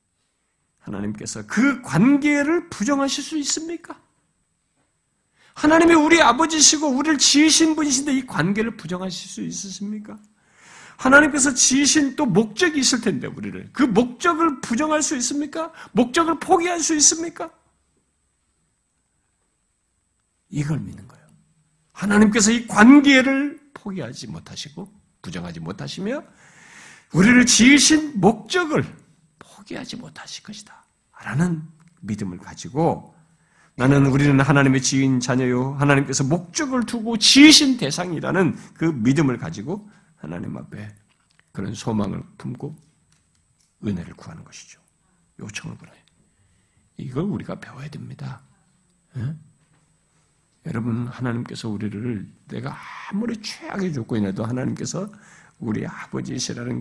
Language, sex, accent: Korean, male, native